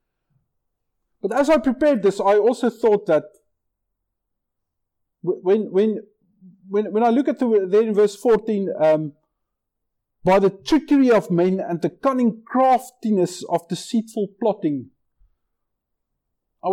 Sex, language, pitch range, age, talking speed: male, English, 195-275 Hz, 50-69, 125 wpm